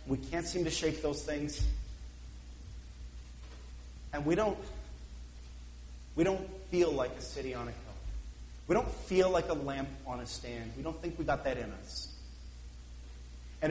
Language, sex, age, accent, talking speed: English, male, 30-49, American, 160 wpm